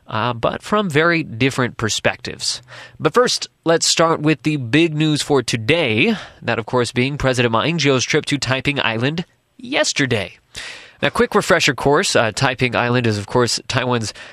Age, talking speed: 20-39, 165 wpm